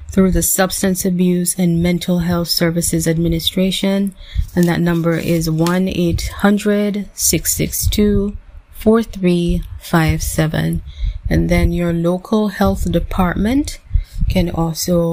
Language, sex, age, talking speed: English, female, 20-39, 85 wpm